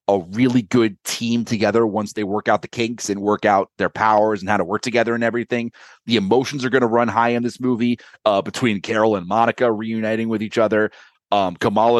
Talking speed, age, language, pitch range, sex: 215 wpm, 30-49, English, 105-125 Hz, male